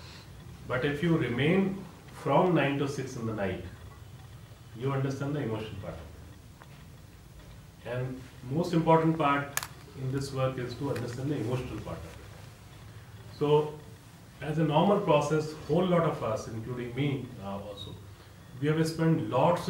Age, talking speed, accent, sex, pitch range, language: 40-59, 150 wpm, Indian, male, 110-140 Hz, English